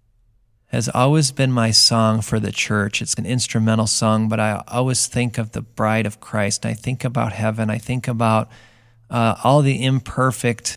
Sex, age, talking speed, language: male, 40-59, 180 wpm, English